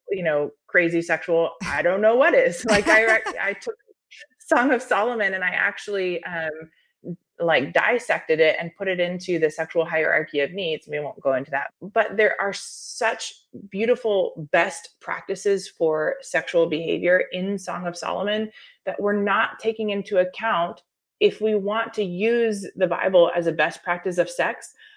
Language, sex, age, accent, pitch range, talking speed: English, female, 20-39, American, 165-235 Hz, 170 wpm